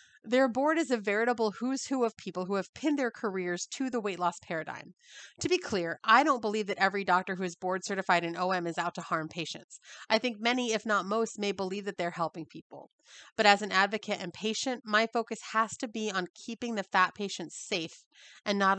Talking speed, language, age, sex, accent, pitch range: 225 wpm, English, 30-49, female, American, 180-225 Hz